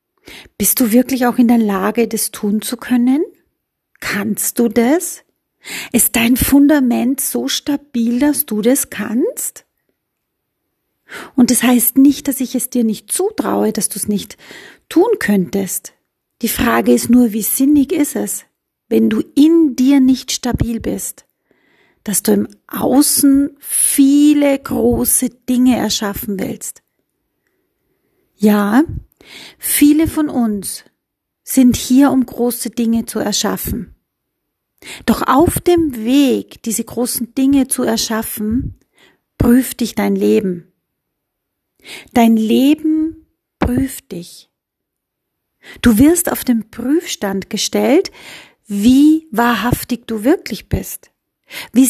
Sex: female